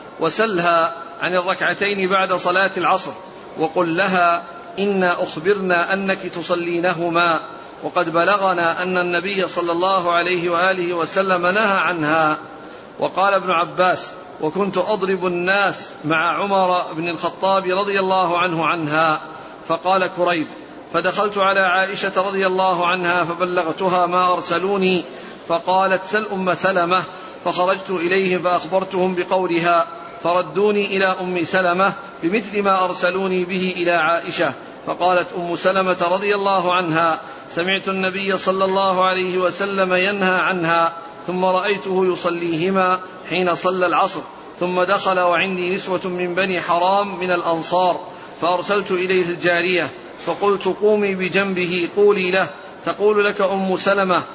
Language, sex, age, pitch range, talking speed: Arabic, male, 50-69, 175-190 Hz, 120 wpm